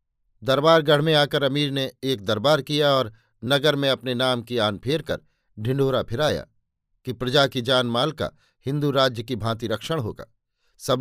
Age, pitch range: 50-69, 120-145 Hz